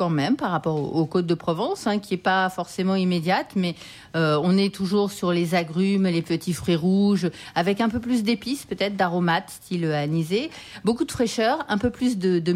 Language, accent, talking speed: French, French, 205 wpm